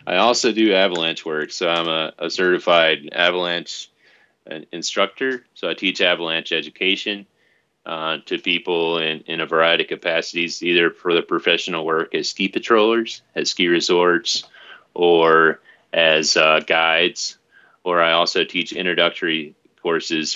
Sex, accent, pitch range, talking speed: male, American, 80-85 Hz, 140 wpm